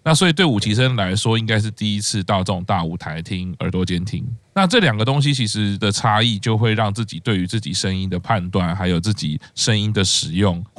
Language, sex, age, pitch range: Chinese, male, 20-39, 105-145 Hz